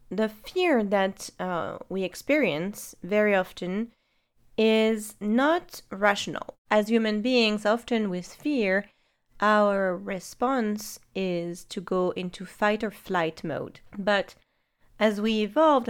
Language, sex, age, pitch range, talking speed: English, female, 30-49, 190-235 Hz, 115 wpm